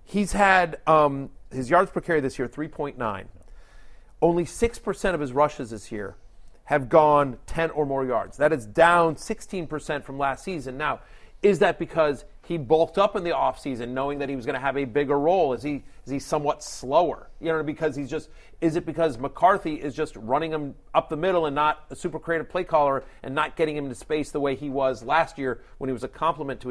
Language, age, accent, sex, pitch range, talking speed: English, 40-59, American, male, 135-160 Hz, 225 wpm